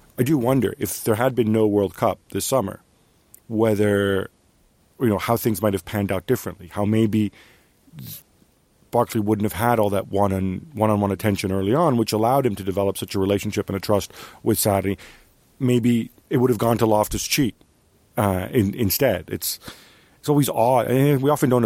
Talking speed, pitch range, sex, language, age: 190 wpm, 100-120 Hz, male, English, 40-59